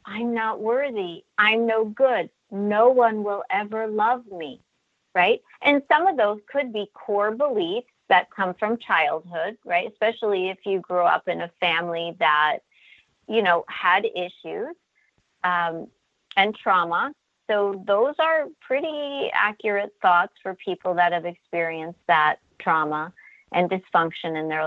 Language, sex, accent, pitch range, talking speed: English, female, American, 180-270 Hz, 145 wpm